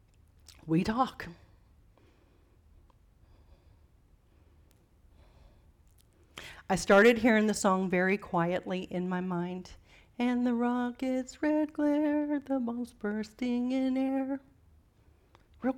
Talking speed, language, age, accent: 90 wpm, English, 40-59, American